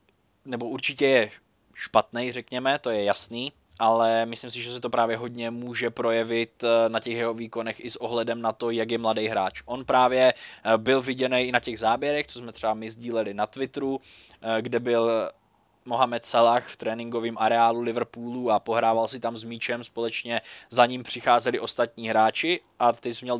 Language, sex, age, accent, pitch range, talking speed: Czech, male, 20-39, native, 115-125 Hz, 180 wpm